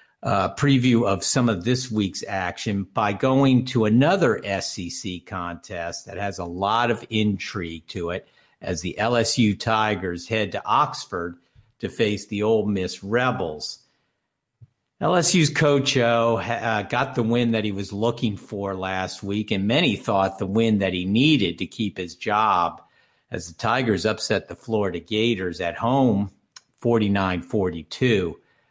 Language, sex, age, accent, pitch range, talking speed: English, male, 50-69, American, 95-115 Hz, 145 wpm